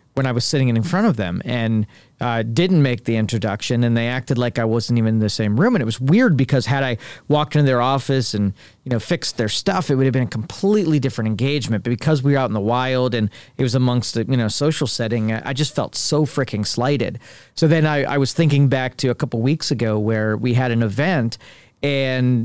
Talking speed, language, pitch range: 245 wpm, English, 115-140 Hz